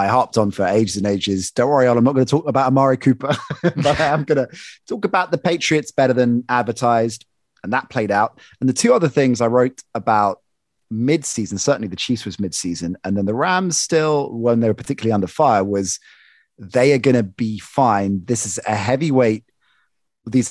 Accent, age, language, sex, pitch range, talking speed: British, 30-49, English, male, 105-135 Hz, 210 wpm